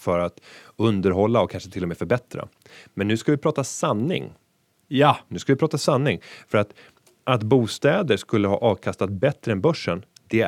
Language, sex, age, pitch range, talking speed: Swedish, male, 30-49, 95-125 Hz, 185 wpm